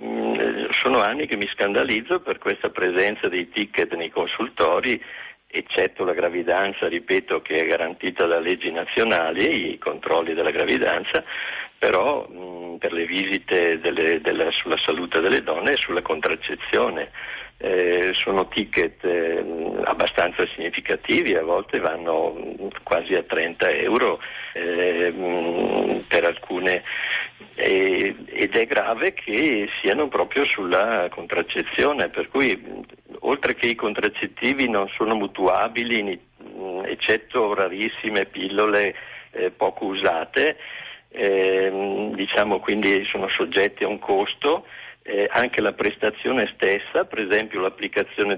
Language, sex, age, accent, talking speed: Italian, male, 50-69, native, 115 wpm